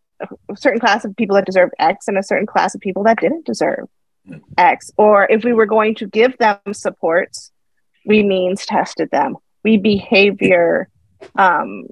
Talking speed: 170 wpm